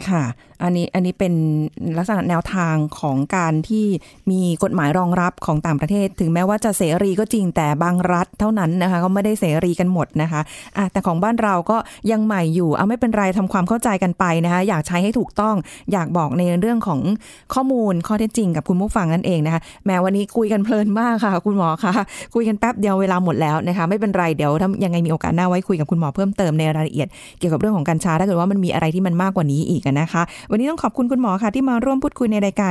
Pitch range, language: 165-205 Hz, Thai